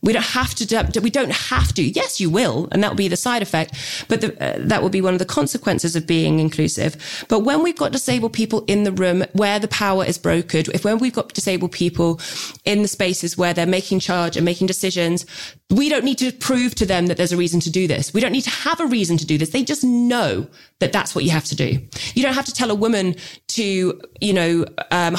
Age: 20-39